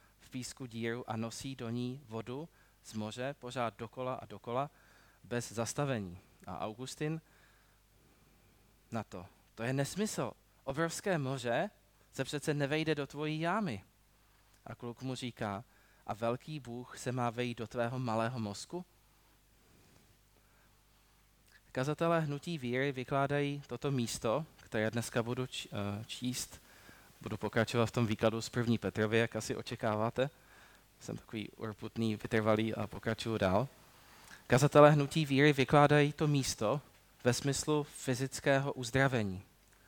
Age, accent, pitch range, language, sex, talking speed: 20-39, native, 110-135 Hz, Czech, male, 125 wpm